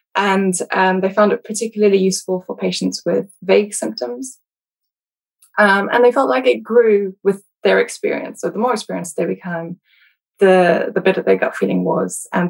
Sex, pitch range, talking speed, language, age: female, 175-215 Hz, 175 wpm, English, 10-29